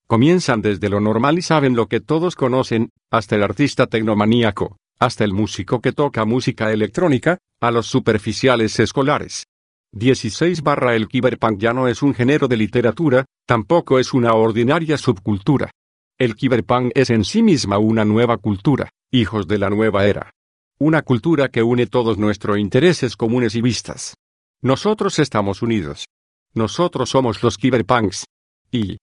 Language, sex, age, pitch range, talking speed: Spanish, male, 50-69, 110-130 Hz, 150 wpm